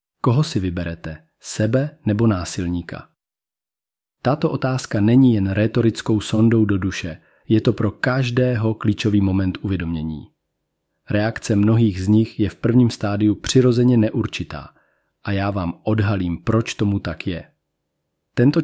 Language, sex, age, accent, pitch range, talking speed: Czech, male, 40-59, native, 100-120 Hz, 130 wpm